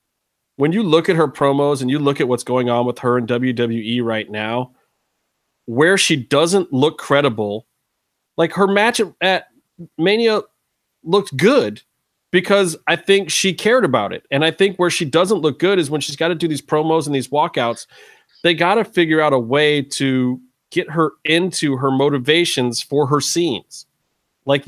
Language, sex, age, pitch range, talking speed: English, male, 30-49, 130-170 Hz, 180 wpm